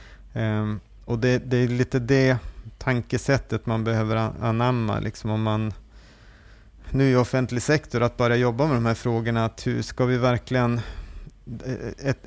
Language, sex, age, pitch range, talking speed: Swedish, male, 30-49, 110-125 Hz, 150 wpm